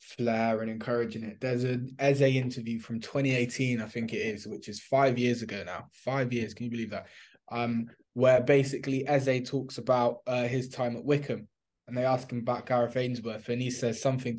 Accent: British